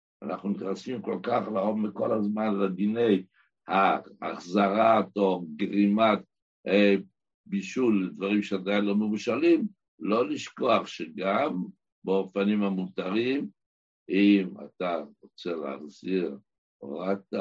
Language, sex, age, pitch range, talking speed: Hebrew, male, 60-79, 100-125 Hz, 95 wpm